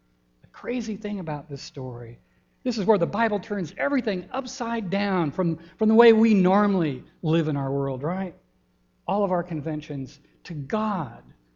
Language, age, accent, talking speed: English, 60-79, American, 160 wpm